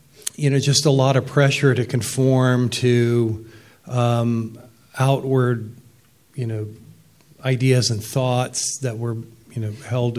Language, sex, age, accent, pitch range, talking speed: English, male, 40-59, American, 115-135 Hz, 130 wpm